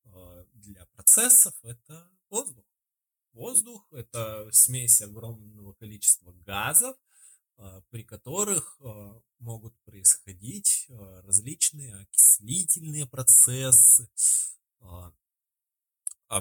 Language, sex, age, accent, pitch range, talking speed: Russian, male, 20-39, native, 105-140 Hz, 65 wpm